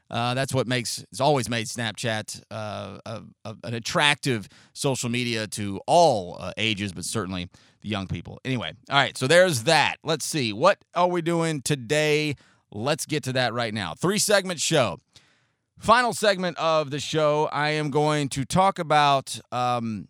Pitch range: 120-165 Hz